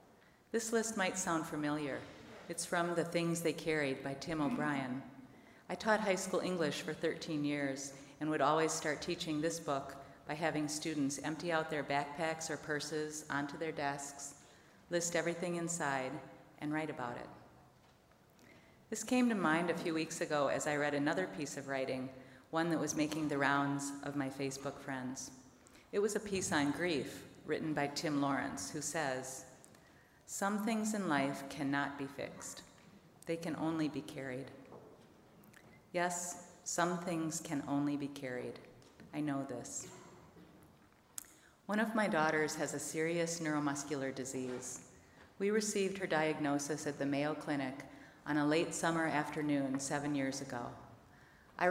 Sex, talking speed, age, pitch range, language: female, 155 wpm, 40-59, 140-165 Hz, English